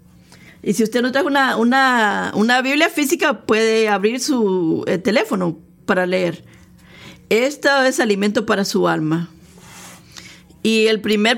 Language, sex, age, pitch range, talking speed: Spanish, female, 40-59, 185-260 Hz, 125 wpm